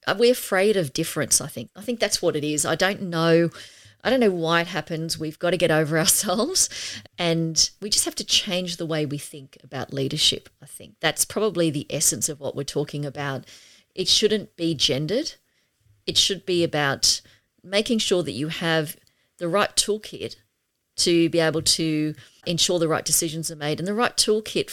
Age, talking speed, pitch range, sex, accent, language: 40-59, 190 wpm, 150-180 Hz, female, Australian, English